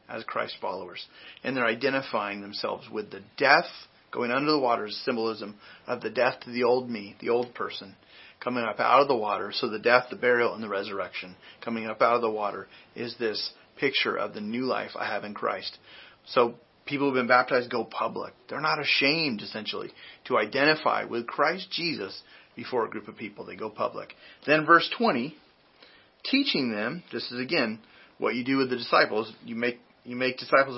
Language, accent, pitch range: English, American, 120-150 Hz